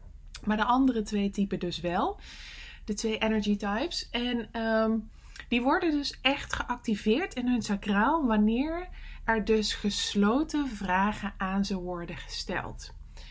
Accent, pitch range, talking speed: Dutch, 190-225 Hz, 135 wpm